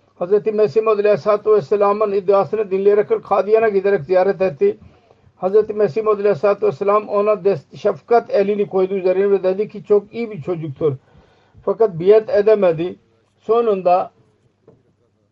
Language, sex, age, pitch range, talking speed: Turkish, male, 50-69, 185-210 Hz, 105 wpm